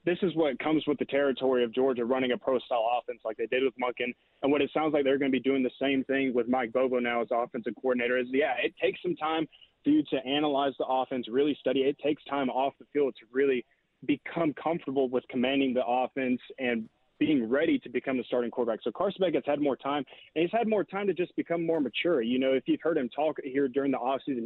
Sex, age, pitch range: male, 20-39, 130-150 Hz